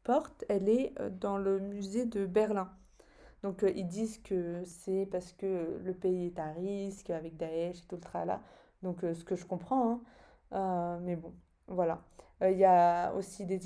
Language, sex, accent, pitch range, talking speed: French, female, French, 180-205 Hz, 195 wpm